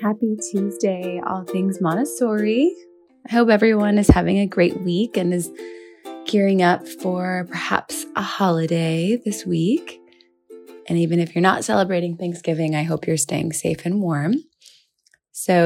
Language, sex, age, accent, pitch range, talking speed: English, female, 20-39, American, 160-200 Hz, 145 wpm